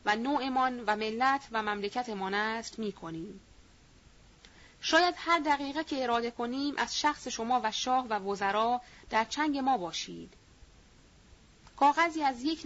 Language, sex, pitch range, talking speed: Persian, female, 215-275 Hz, 135 wpm